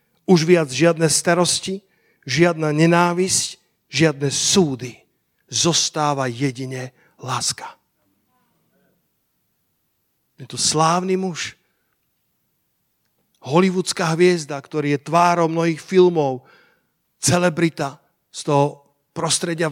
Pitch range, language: 145-170 Hz, Slovak